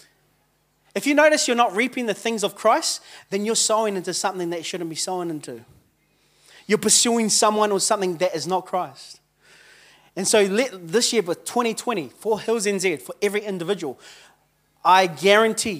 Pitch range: 175-215 Hz